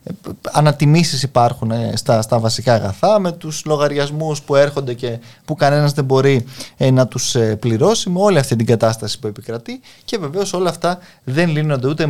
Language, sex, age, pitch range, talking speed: Greek, male, 20-39, 120-160 Hz, 180 wpm